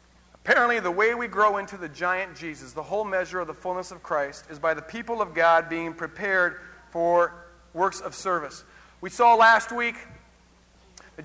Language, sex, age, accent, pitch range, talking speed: English, male, 40-59, American, 190-245 Hz, 180 wpm